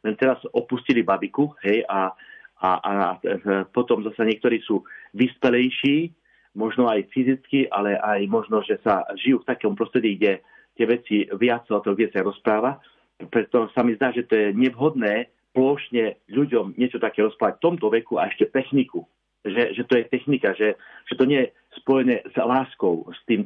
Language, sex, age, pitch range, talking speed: Slovak, male, 40-59, 110-130 Hz, 165 wpm